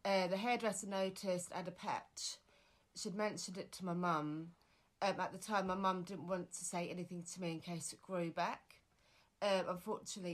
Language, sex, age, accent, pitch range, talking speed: English, female, 30-49, British, 170-190 Hz, 190 wpm